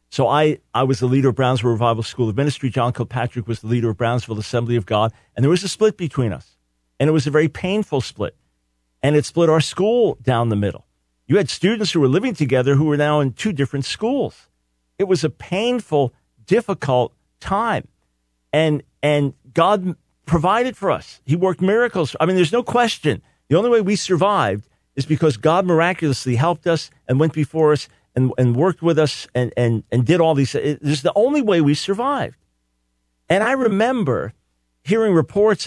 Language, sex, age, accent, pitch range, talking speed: English, male, 50-69, American, 125-185 Hz, 195 wpm